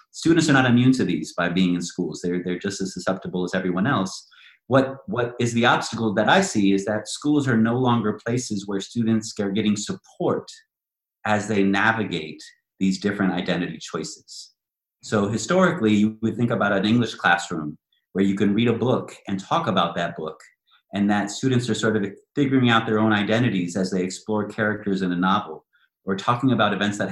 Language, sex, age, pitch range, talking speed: English, male, 30-49, 95-115 Hz, 195 wpm